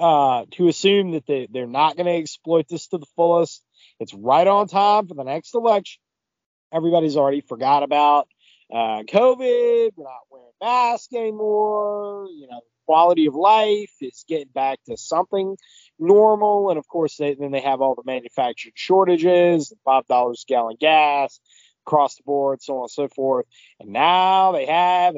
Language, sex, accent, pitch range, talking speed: English, male, American, 135-190 Hz, 175 wpm